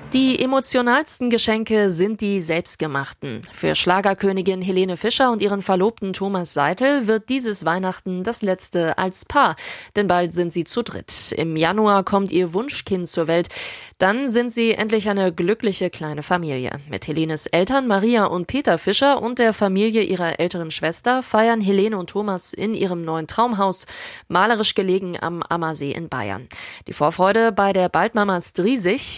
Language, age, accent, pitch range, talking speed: German, 20-39, German, 175-220 Hz, 160 wpm